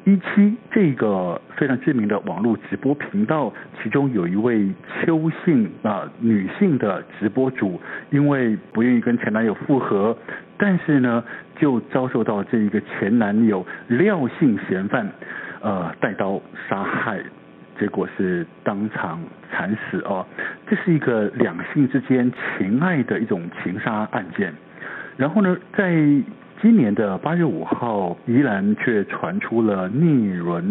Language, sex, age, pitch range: Chinese, male, 60-79, 110-180 Hz